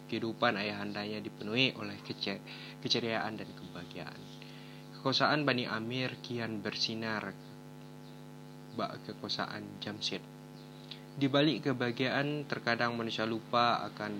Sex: male